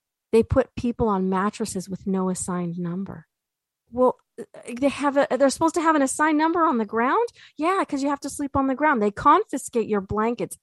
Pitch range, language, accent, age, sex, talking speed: 190-270 Hz, English, American, 30-49, female, 190 wpm